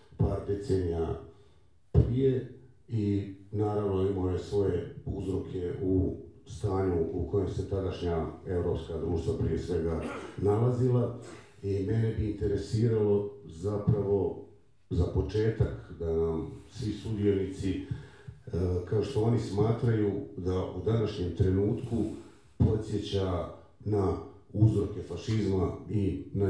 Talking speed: 100 wpm